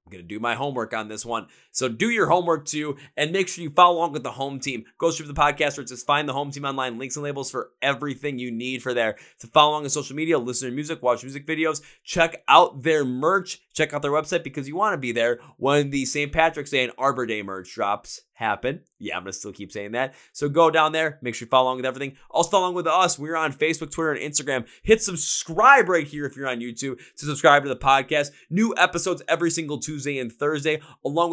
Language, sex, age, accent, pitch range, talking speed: English, male, 20-39, American, 130-170 Hz, 250 wpm